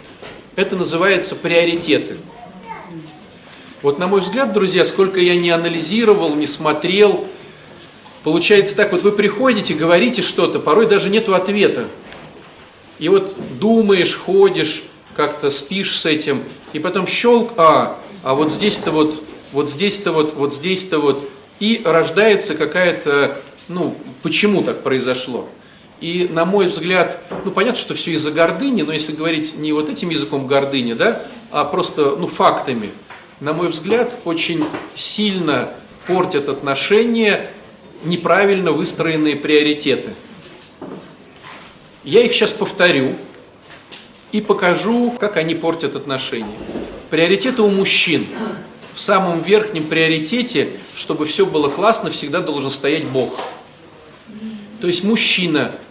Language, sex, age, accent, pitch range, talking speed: Russian, male, 40-59, native, 155-205 Hz, 125 wpm